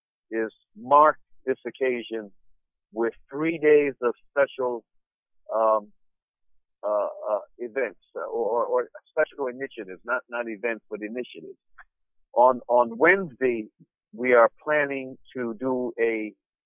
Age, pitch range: 50-69, 115-135 Hz